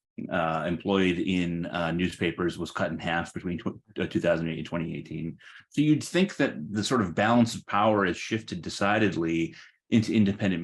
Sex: male